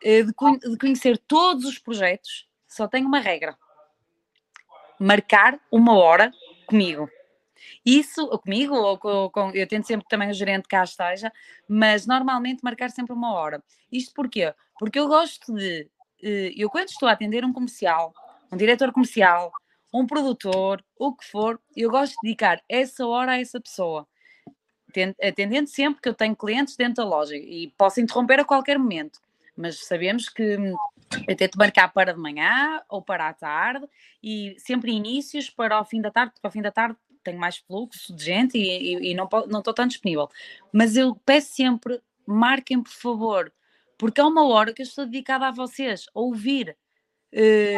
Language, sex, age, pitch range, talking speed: Portuguese, female, 20-39, 195-255 Hz, 170 wpm